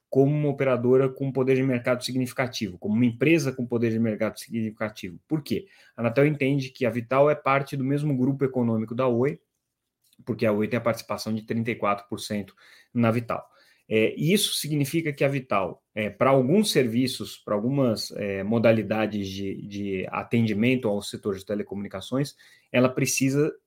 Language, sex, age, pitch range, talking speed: Portuguese, male, 30-49, 110-140 Hz, 165 wpm